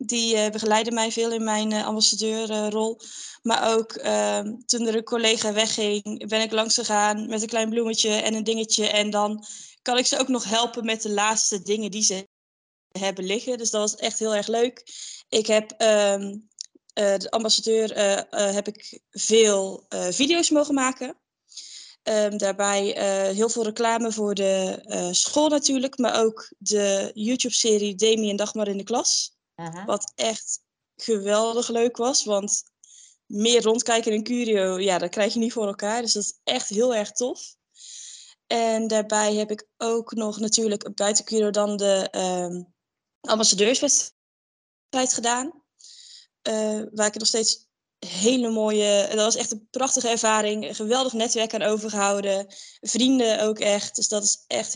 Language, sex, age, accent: Dutch, female, 20-39, Dutch